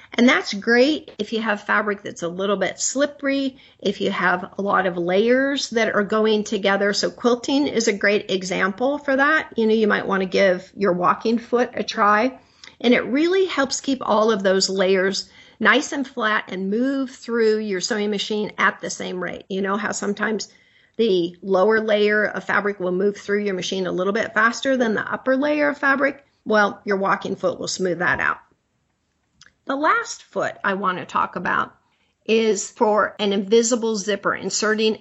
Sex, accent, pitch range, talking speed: female, American, 195-245 Hz, 190 wpm